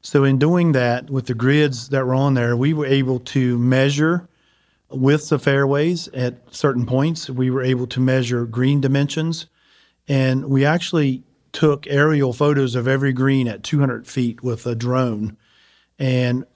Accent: American